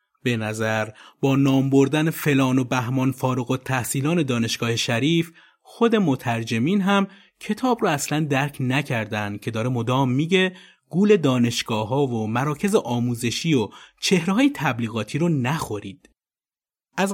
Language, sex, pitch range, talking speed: Persian, male, 125-175 Hz, 130 wpm